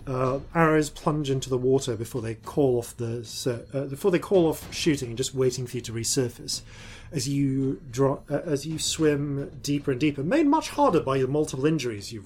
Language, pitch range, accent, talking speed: English, 115-140 Hz, British, 205 wpm